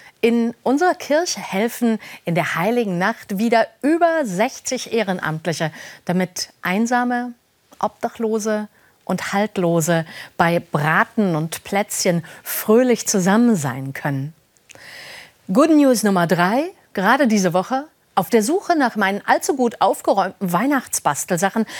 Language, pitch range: German, 170-245 Hz